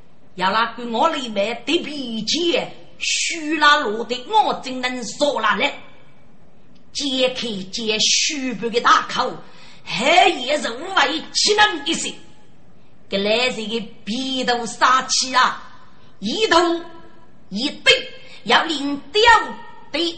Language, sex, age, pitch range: Chinese, female, 30-49, 230-330 Hz